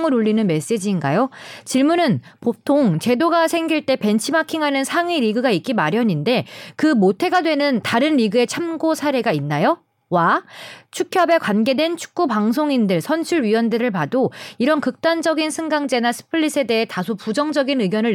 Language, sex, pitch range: Korean, female, 225-300 Hz